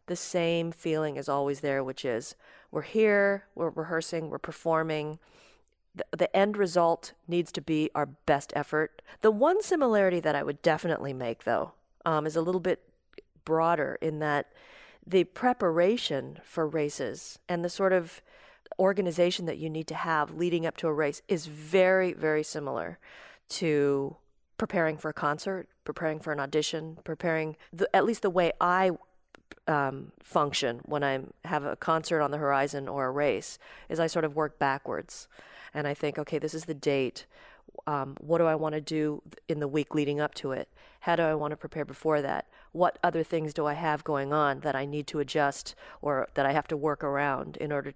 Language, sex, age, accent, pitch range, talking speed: English, female, 40-59, American, 145-170 Hz, 190 wpm